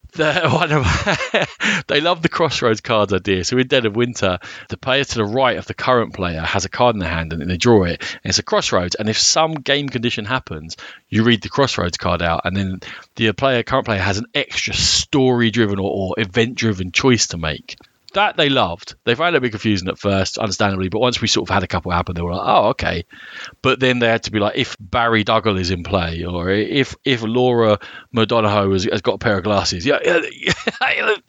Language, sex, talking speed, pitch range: English, male, 220 wpm, 95-125 Hz